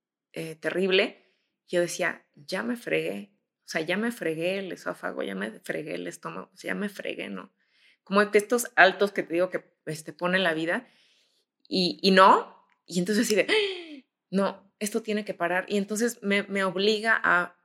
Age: 20-39